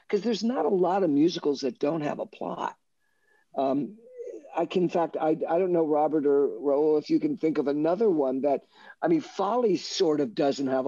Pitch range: 150-215 Hz